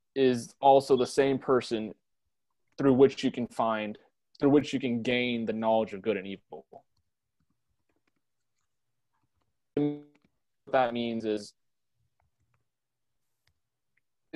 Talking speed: 100 wpm